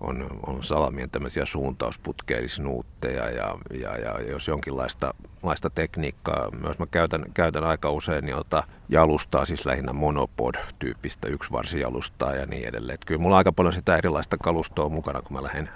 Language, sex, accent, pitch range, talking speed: Finnish, male, native, 75-90 Hz, 140 wpm